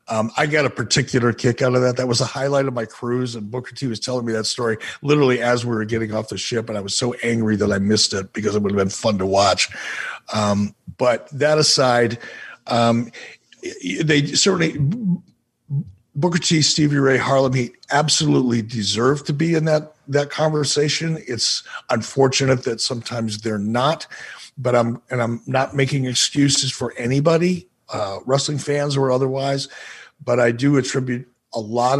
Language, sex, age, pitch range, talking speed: English, male, 50-69, 115-145 Hz, 180 wpm